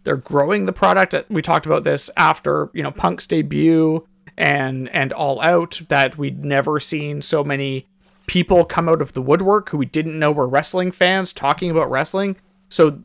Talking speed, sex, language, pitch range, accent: 185 wpm, male, English, 135-175 Hz, American